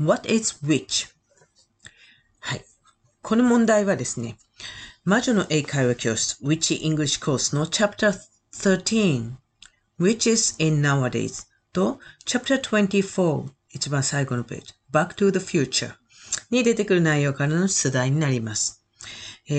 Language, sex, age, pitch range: Japanese, female, 40-59, 125-195 Hz